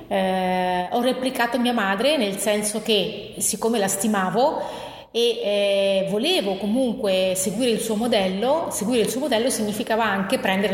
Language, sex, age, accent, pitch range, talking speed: Italian, female, 30-49, native, 190-245 Hz, 145 wpm